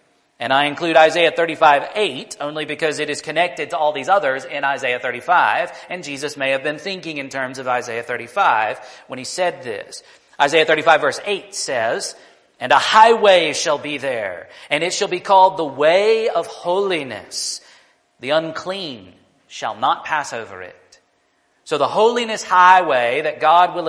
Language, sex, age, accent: English, male, 40-59, American